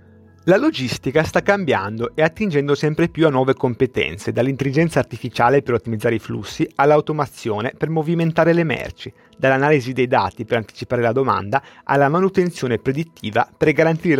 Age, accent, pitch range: 30-49, native, 125-160 Hz